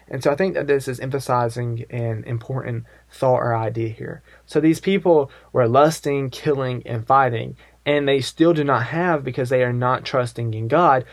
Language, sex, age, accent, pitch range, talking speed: English, male, 20-39, American, 120-140 Hz, 190 wpm